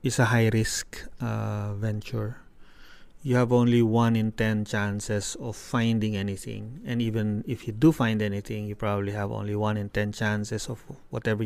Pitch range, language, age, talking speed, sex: 110-125 Hz, English, 20-39, 160 wpm, male